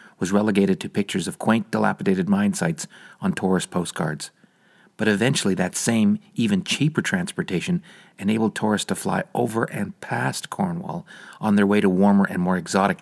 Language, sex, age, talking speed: English, male, 40-59, 160 wpm